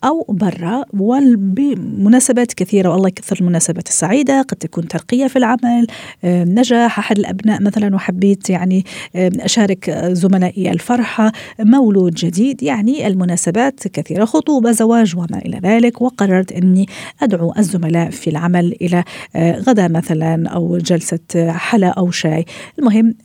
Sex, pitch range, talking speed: female, 175-225 Hz, 120 wpm